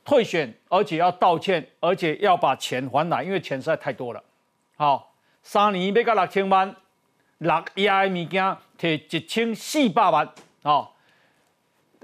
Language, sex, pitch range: Chinese, male, 165-245 Hz